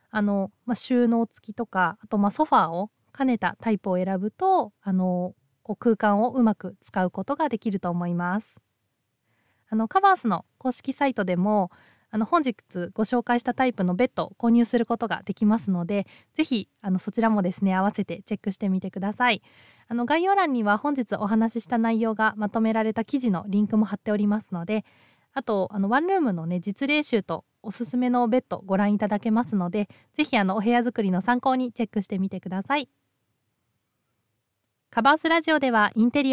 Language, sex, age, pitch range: Japanese, female, 20-39, 195-245 Hz